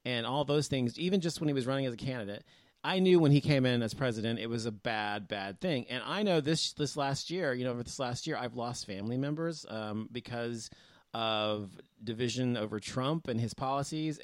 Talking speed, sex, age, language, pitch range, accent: 225 wpm, male, 30-49, English, 115-150 Hz, American